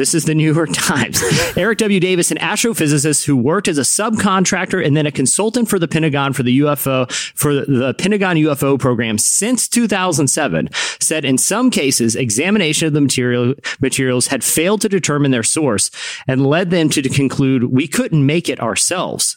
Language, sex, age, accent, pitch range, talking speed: English, male, 30-49, American, 125-170 Hz, 180 wpm